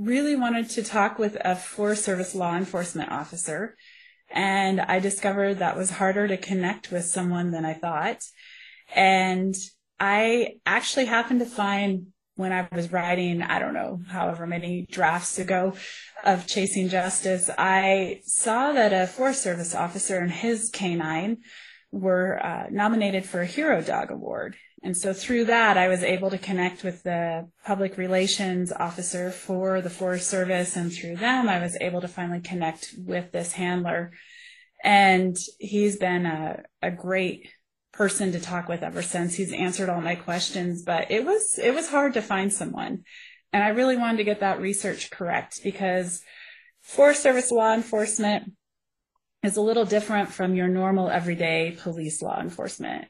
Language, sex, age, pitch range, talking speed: English, female, 20-39, 180-215 Hz, 160 wpm